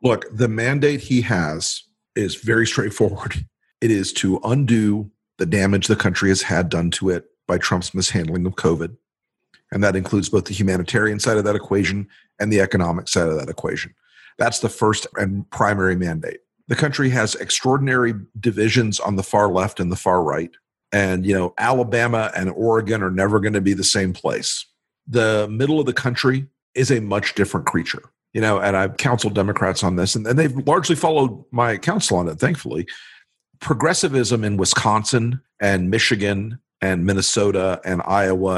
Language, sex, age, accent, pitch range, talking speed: English, male, 50-69, American, 95-120 Hz, 175 wpm